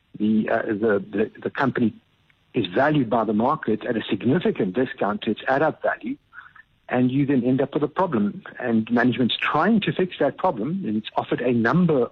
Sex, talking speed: male, 195 wpm